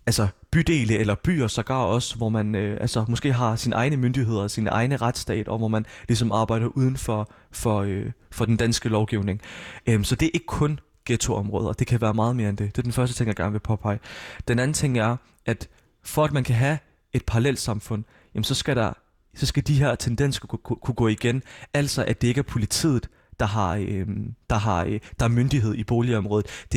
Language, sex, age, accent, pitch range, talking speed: Danish, male, 20-39, native, 105-130 Hz, 215 wpm